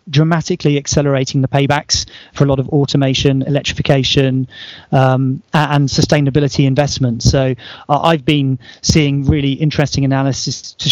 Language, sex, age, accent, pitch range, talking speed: English, male, 30-49, British, 135-150 Hz, 125 wpm